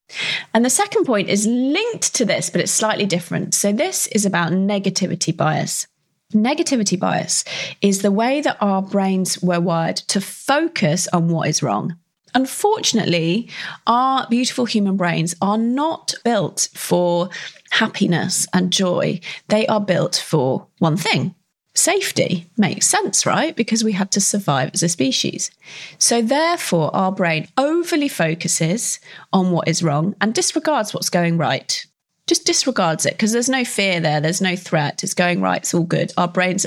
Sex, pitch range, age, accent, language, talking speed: female, 180-240 Hz, 30-49, British, English, 160 wpm